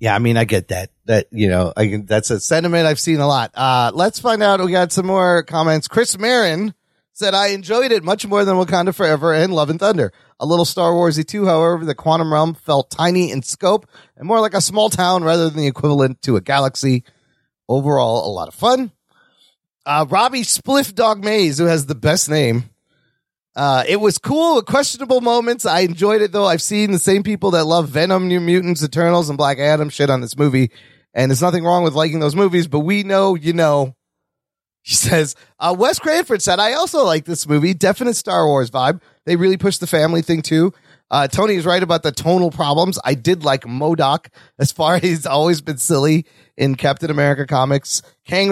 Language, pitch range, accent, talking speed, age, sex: English, 140-190 Hz, American, 210 wpm, 30-49, male